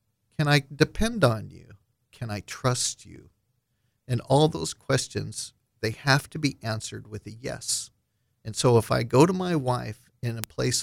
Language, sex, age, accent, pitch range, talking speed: English, male, 40-59, American, 110-130 Hz, 175 wpm